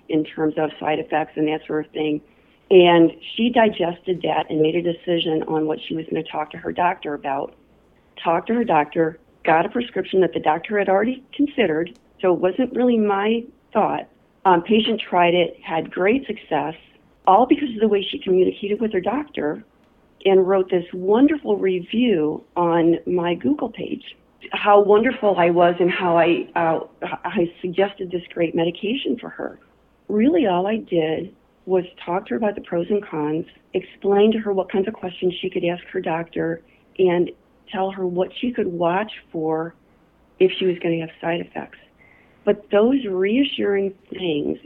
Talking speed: 180 wpm